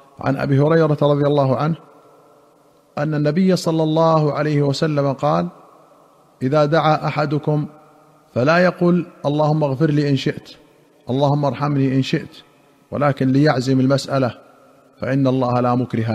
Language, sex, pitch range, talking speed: Arabic, male, 135-155 Hz, 125 wpm